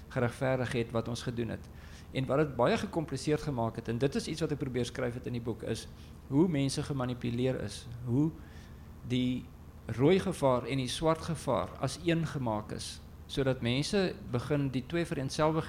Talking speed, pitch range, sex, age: 185 wpm, 115-150 Hz, male, 50-69